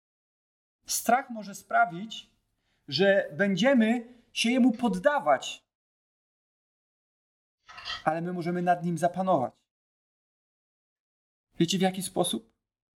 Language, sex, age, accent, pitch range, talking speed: Polish, male, 30-49, native, 145-190 Hz, 85 wpm